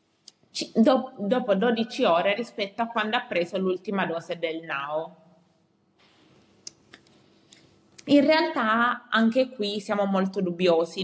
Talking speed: 105 wpm